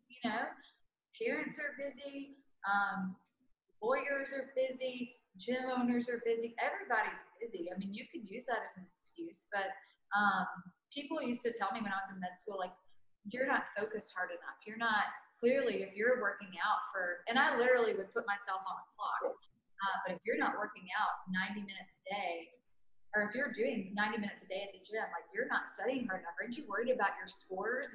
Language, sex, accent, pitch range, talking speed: English, female, American, 195-250 Hz, 200 wpm